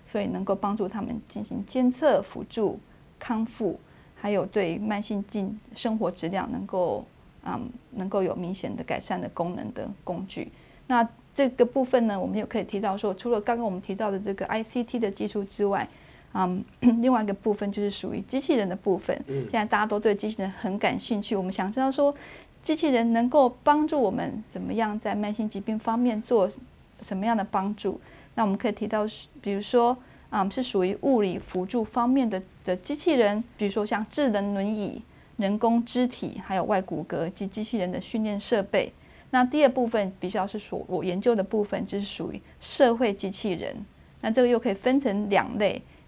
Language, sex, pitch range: Chinese, female, 195-240 Hz